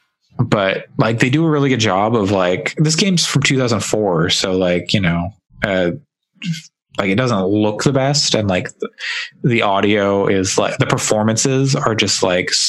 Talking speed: 170 wpm